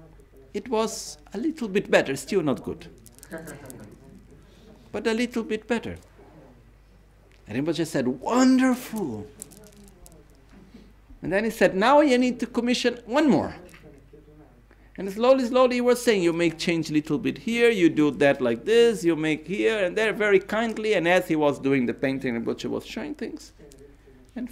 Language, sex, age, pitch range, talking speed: Italian, male, 60-79, 140-200 Hz, 160 wpm